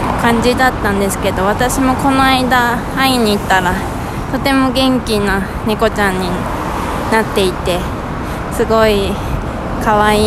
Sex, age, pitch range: female, 20-39, 200-250 Hz